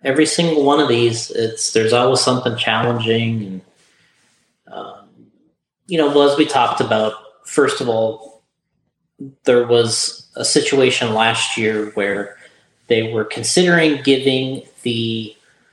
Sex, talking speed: male, 130 wpm